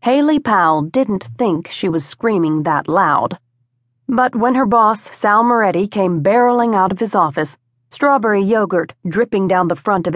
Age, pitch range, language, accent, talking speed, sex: 40-59, 155-230 Hz, English, American, 165 wpm, female